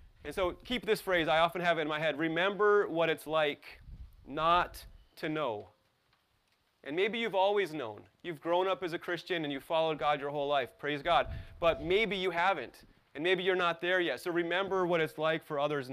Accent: American